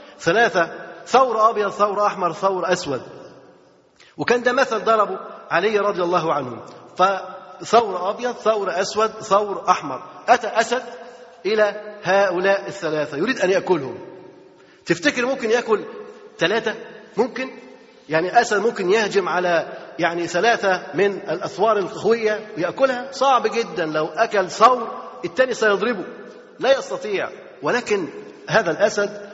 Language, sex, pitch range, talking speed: Arabic, male, 185-235 Hz, 115 wpm